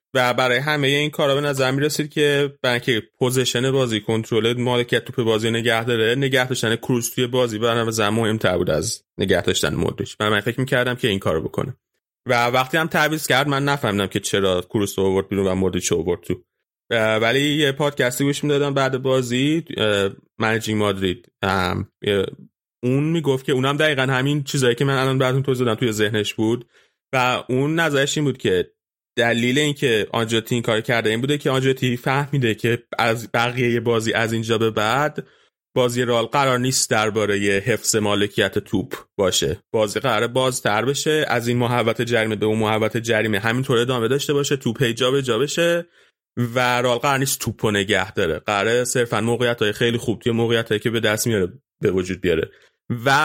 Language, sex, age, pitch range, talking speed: Persian, male, 30-49, 110-135 Hz, 180 wpm